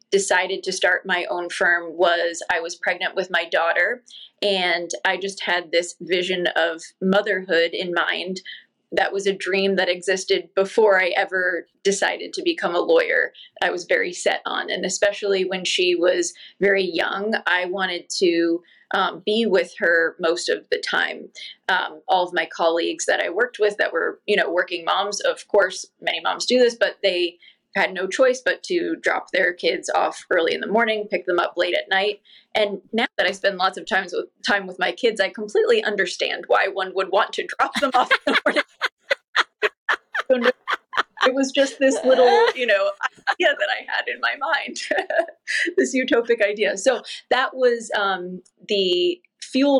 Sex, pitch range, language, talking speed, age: female, 185-270 Hz, English, 180 wpm, 20-39